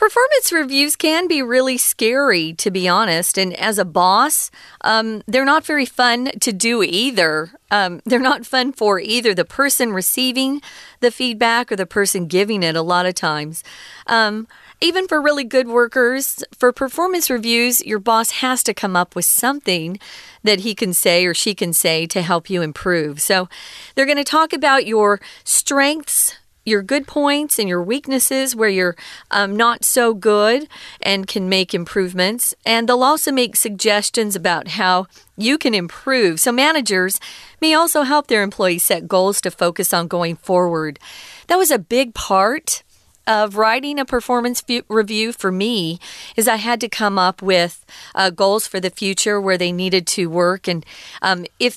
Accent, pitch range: American, 185-260 Hz